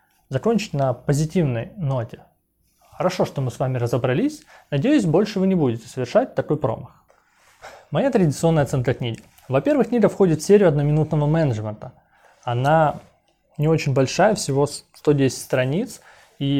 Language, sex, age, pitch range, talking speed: Russian, male, 20-39, 130-175 Hz, 135 wpm